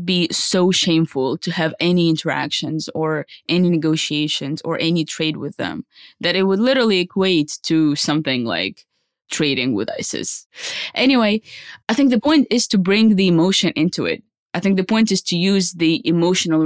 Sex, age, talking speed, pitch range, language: female, 20-39, 170 wpm, 150-185 Hz, English